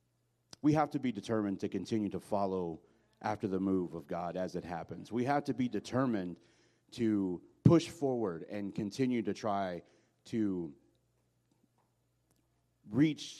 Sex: male